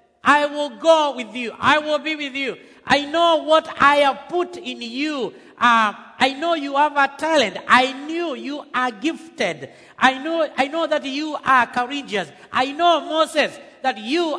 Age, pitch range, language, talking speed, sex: 50-69, 235-300 Hz, English, 180 wpm, male